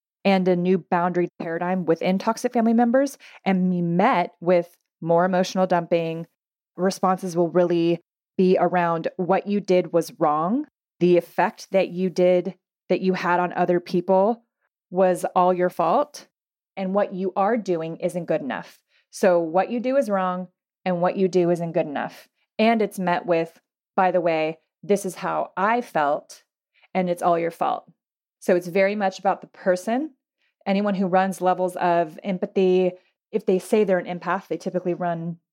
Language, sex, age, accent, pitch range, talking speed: English, female, 20-39, American, 180-205 Hz, 170 wpm